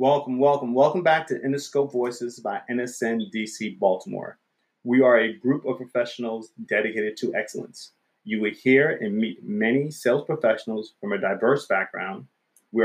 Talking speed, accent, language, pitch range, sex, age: 155 wpm, American, English, 110-155 Hz, male, 30-49